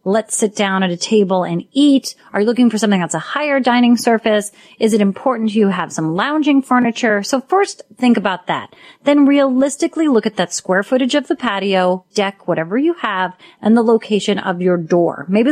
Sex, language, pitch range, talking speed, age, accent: female, English, 190-245 Hz, 205 wpm, 30-49, American